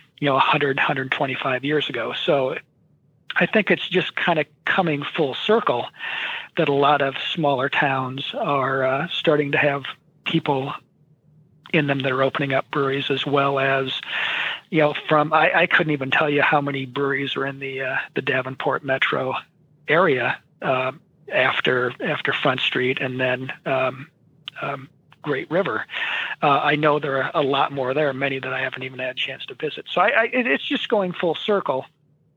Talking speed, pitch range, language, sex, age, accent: 180 wpm, 135-155 Hz, English, male, 40-59, American